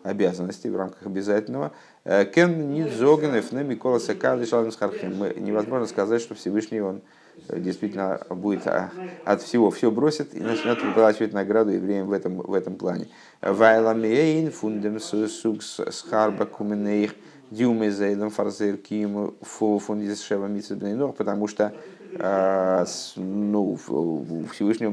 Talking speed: 85 wpm